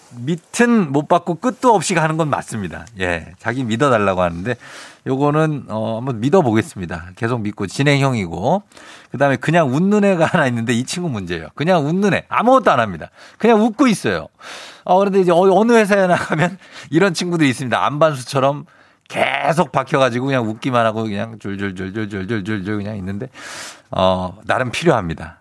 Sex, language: male, Korean